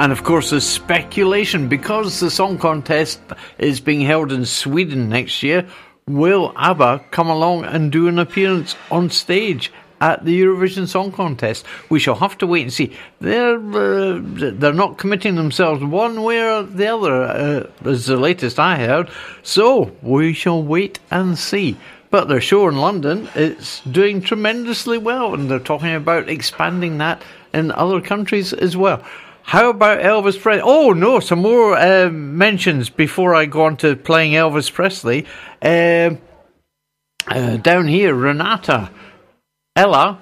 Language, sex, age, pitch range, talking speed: English, male, 60-79, 150-195 Hz, 155 wpm